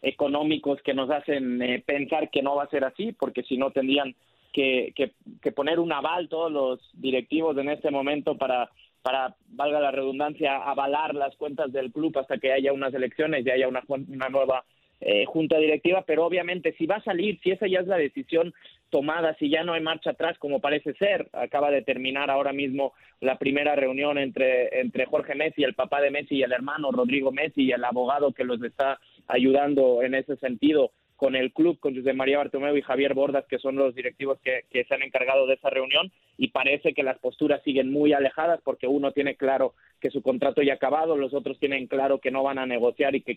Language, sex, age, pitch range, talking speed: Spanish, male, 30-49, 135-155 Hz, 215 wpm